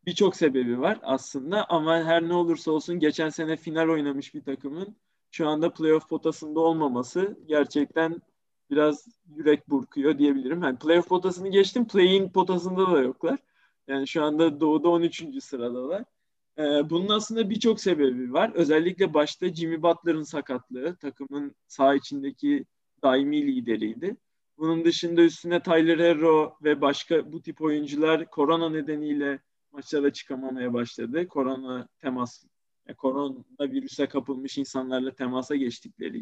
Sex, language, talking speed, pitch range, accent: male, Turkish, 130 wpm, 140-180 Hz, native